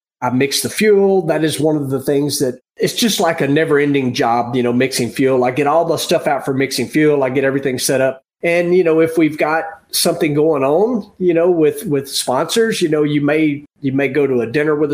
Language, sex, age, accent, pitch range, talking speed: English, male, 40-59, American, 135-165 Hz, 240 wpm